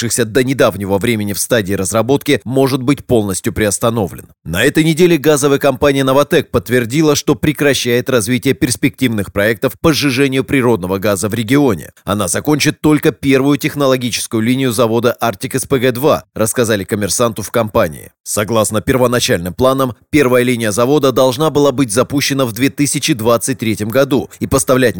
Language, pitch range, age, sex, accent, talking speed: Russian, 115-140 Hz, 30-49, male, native, 135 wpm